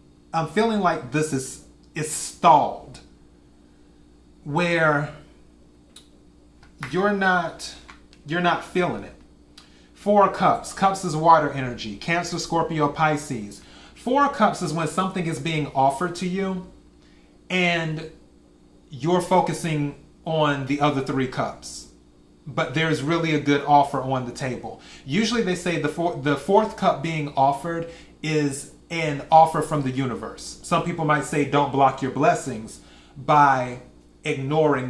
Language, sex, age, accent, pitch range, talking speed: English, male, 30-49, American, 115-165 Hz, 135 wpm